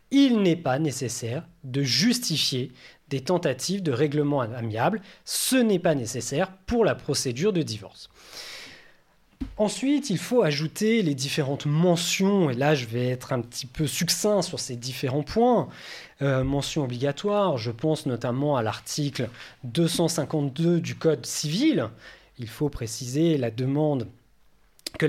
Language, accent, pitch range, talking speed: French, French, 125-175 Hz, 140 wpm